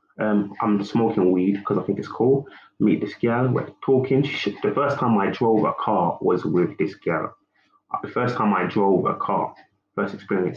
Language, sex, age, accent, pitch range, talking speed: English, male, 20-39, British, 100-125 Hz, 205 wpm